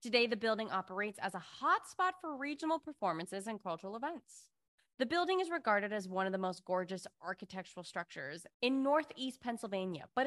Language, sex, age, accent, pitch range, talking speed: English, female, 20-39, American, 190-285 Hz, 170 wpm